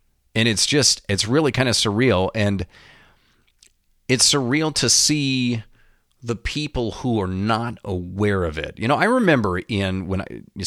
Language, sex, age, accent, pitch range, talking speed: English, male, 40-59, American, 95-125 Hz, 155 wpm